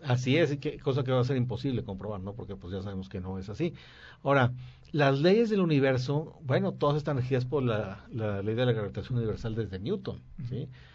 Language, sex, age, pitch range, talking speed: Spanish, male, 50-69, 120-145 Hz, 220 wpm